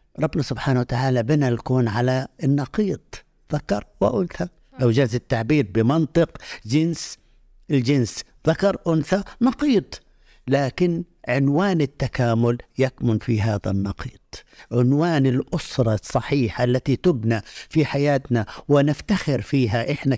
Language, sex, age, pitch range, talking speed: Arabic, male, 60-79, 120-150 Hz, 100 wpm